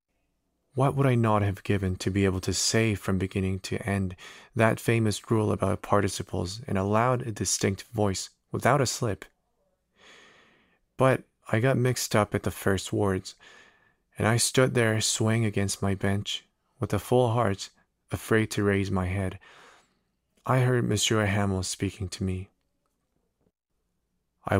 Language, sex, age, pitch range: Korean, male, 30-49, 95-115 Hz